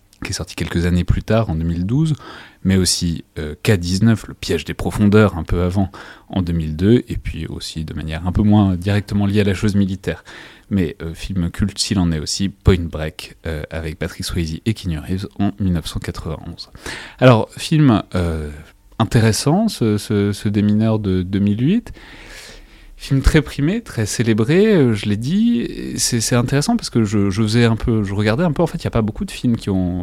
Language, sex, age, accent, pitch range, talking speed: French, male, 30-49, French, 90-115 Hz, 205 wpm